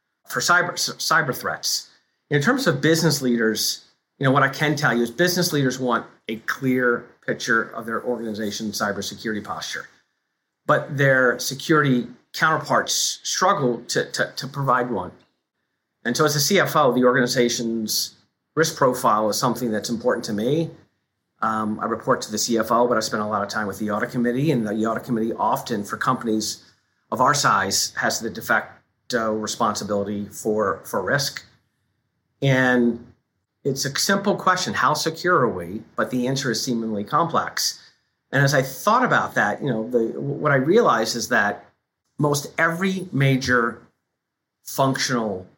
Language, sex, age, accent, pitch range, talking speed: English, male, 40-59, American, 110-135 Hz, 160 wpm